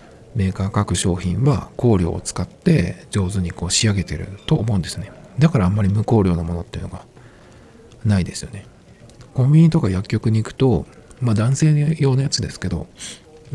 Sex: male